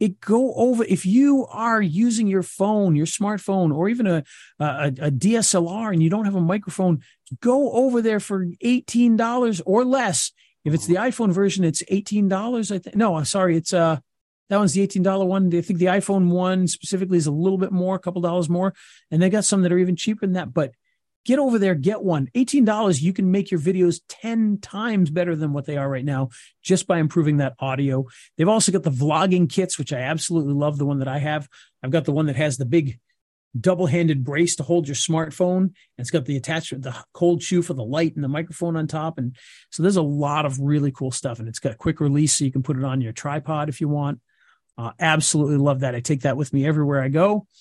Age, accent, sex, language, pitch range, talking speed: 40-59, American, male, English, 150-195 Hz, 235 wpm